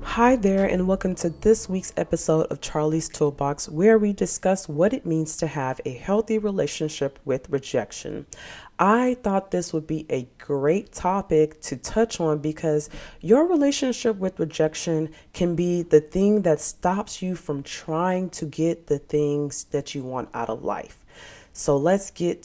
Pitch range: 140-185 Hz